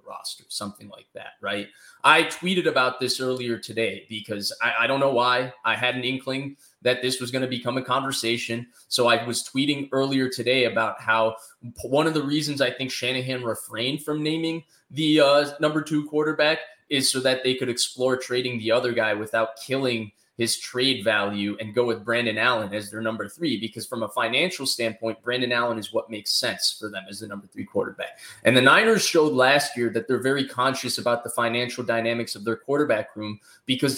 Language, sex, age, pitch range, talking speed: English, male, 20-39, 115-140 Hz, 200 wpm